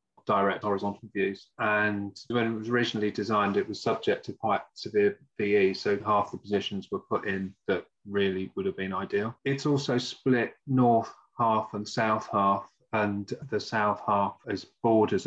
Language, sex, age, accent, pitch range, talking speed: English, male, 30-49, British, 95-110 Hz, 170 wpm